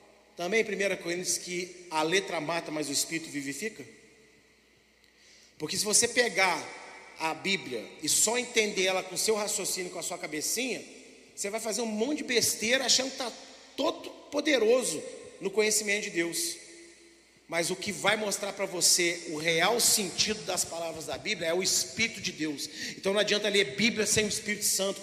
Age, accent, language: 40-59, Brazilian, Portuguese